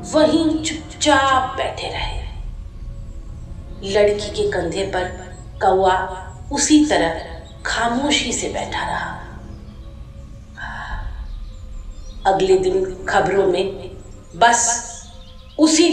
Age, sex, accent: 40-59, female, native